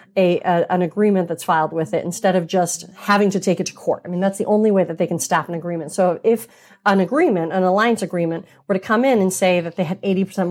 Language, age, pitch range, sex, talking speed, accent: English, 30-49, 175-235 Hz, female, 265 wpm, American